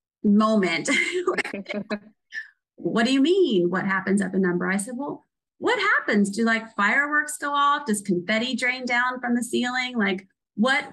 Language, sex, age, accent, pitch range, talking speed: English, female, 30-49, American, 190-235 Hz, 160 wpm